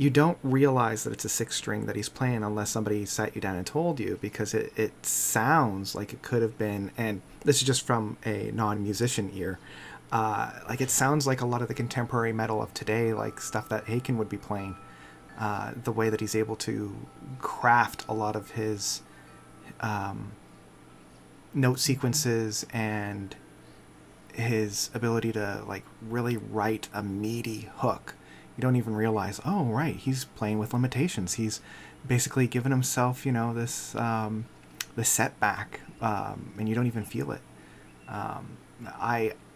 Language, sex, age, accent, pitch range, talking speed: English, male, 30-49, American, 105-125 Hz, 165 wpm